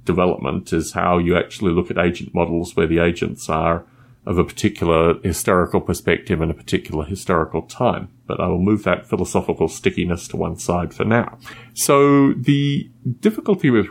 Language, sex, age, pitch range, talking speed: English, male, 30-49, 90-120 Hz, 170 wpm